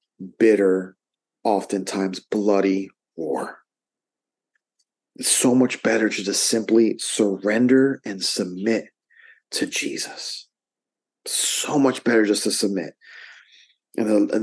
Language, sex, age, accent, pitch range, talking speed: English, male, 40-59, American, 105-130 Hz, 105 wpm